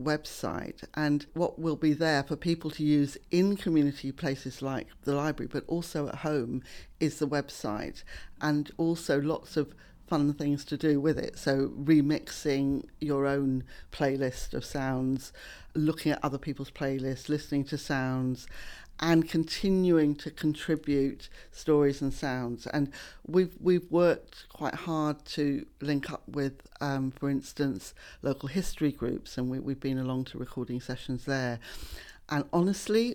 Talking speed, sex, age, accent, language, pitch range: 150 wpm, female, 50-69, British, English, 135-160 Hz